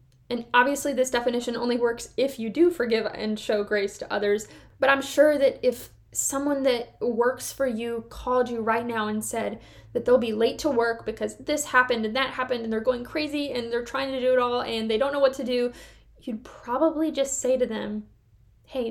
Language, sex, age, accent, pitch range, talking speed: English, female, 10-29, American, 215-255 Hz, 215 wpm